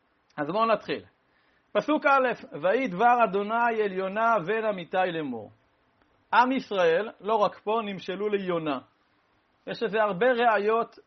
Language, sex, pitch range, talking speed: Hebrew, male, 175-225 Hz, 130 wpm